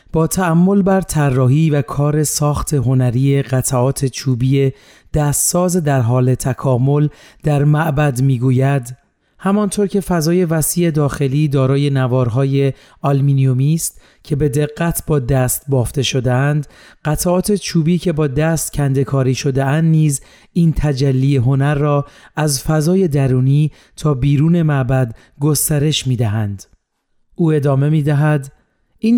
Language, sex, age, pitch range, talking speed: Persian, male, 40-59, 135-160 Hz, 115 wpm